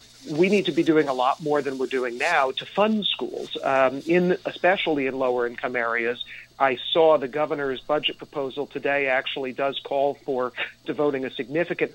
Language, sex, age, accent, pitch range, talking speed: English, male, 40-59, American, 130-160 Hz, 180 wpm